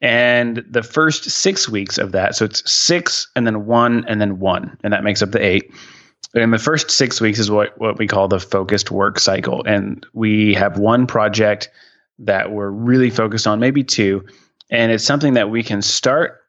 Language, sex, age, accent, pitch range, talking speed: English, male, 30-49, American, 100-120 Hz, 200 wpm